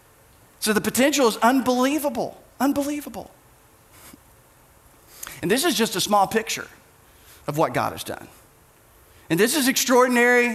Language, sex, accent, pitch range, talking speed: English, male, American, 185-245 Hz, 125 wpm